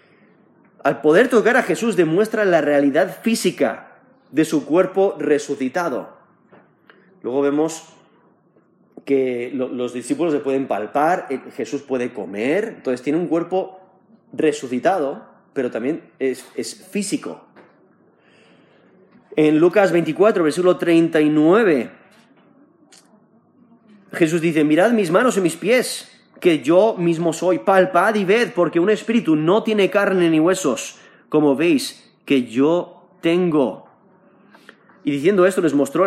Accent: Spanish